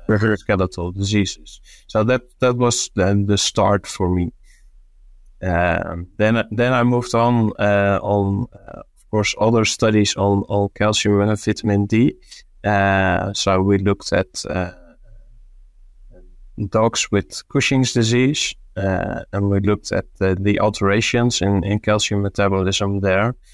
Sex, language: male, English